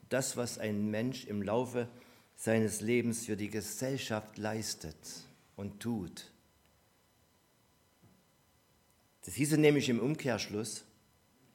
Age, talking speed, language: 50-69, 100 wpm, German